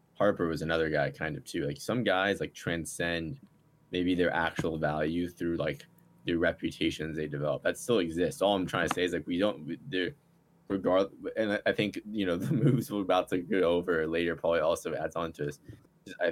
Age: 20-39